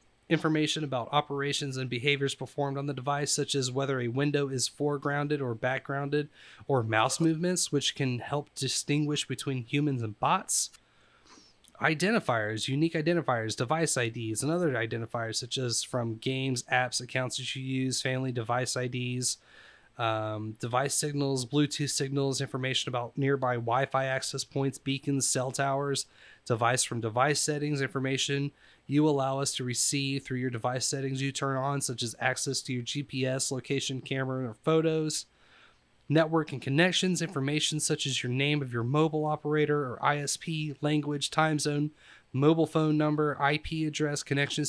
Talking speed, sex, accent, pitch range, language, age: 155 wpm, male, American, 130-150 Hz, English, 30-49